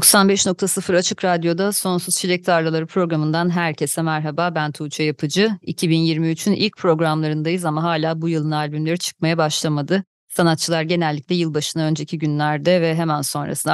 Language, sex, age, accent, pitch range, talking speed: Turkish, female, 30-49, native, 155-180 Hz, 130 wpm